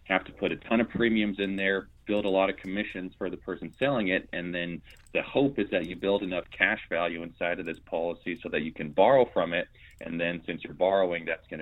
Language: English